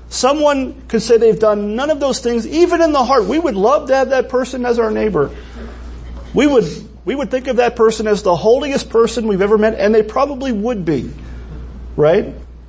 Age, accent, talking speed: 40-59, American, 210 wpm